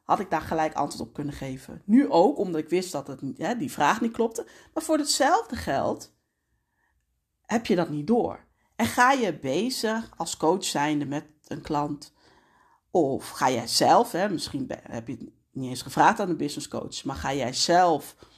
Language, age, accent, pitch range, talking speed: Dutch, 40-59, Dutch, 150-240 Hz, 195 wpm